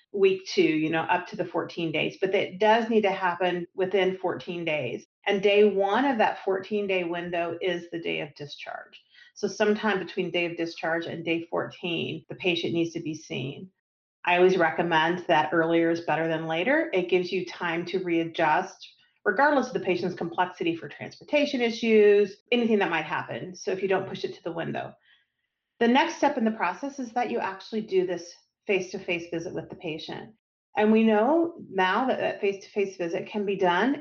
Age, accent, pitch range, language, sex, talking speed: 40-59, American, 175-215 Hz, English, female, 195 wpm